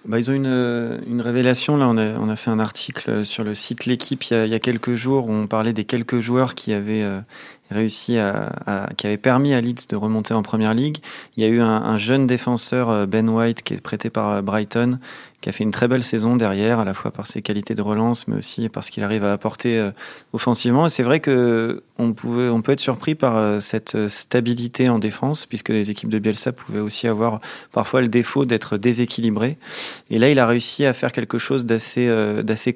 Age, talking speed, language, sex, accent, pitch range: 30-49, 235 wpm, French, male, French, 110-125 Hz